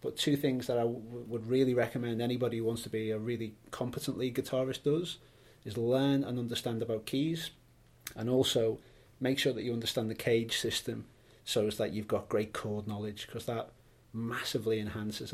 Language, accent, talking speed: English, British, 190 wpm